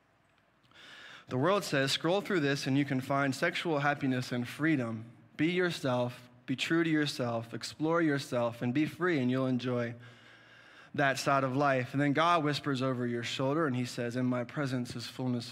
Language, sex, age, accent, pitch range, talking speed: English, male, 20-39, American, 120-140 Hz, 180 wpm